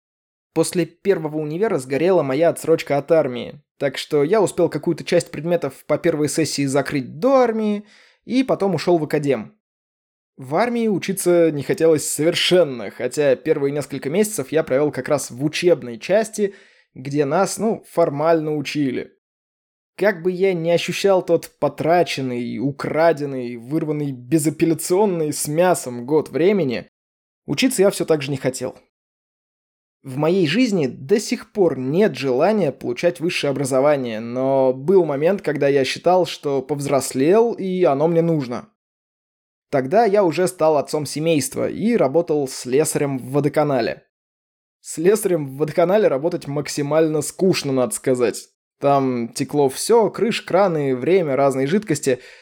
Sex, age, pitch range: male, 20-39, 140-175 Hz